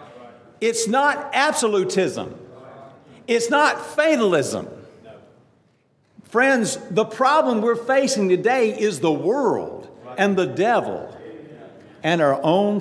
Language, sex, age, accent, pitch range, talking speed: English, male, 50-69, American, 160-225 Hz, 100 wpm